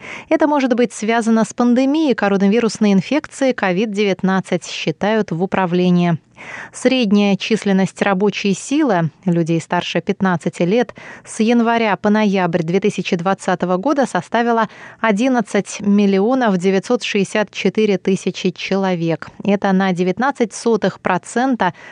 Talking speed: 95 wpm